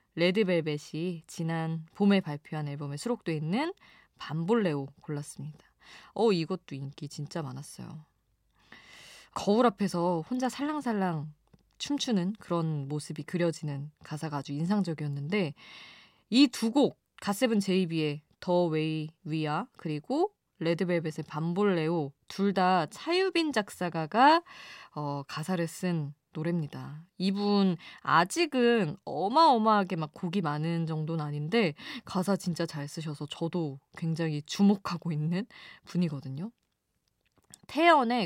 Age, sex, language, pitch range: 20-39, female, Korean, 155-205 Hz